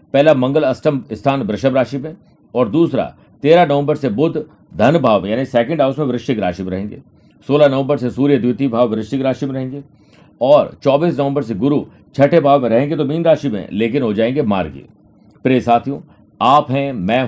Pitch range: 115-140 Hz